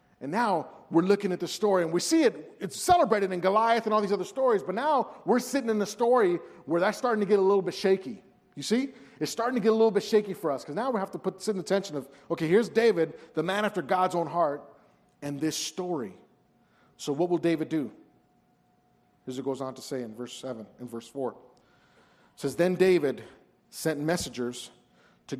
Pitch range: 125-185 Hz